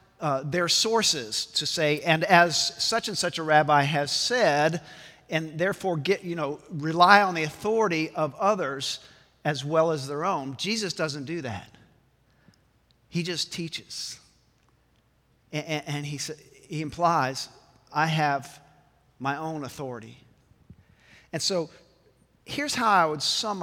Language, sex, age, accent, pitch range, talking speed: English, male, 50-69, American, 140-180 Hz, 135 wpm